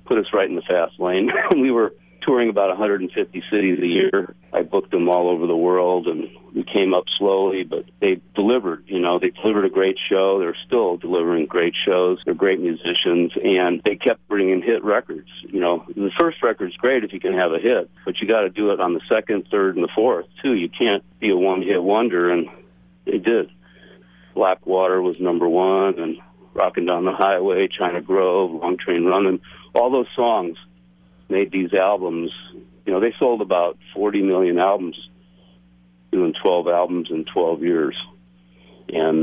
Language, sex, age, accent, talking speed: English, male, 50-69, American, 185 wpm